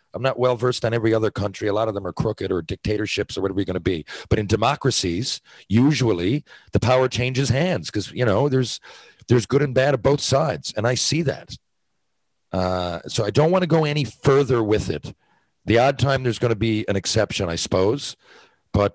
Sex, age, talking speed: male, 40-59, 215 wpm